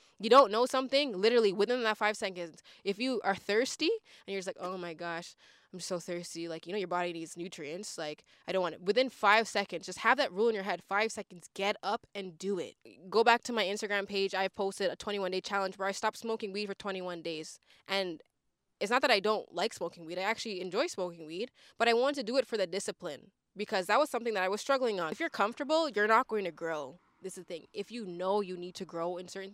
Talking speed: 255 wpm